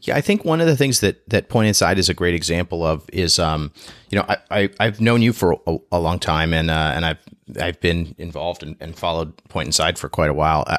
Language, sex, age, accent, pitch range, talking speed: English, male, 30-49, American, 80-95 Hz, 250 wpm